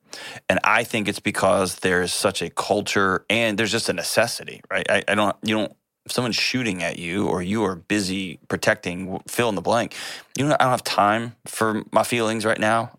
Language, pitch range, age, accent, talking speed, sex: English, 95-110 Hz, 30-49, American, 210 wpm, male